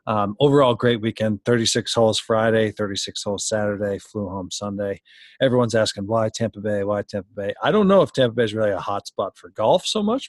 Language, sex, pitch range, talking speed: English, male, 105-125 Hz, 210 wpm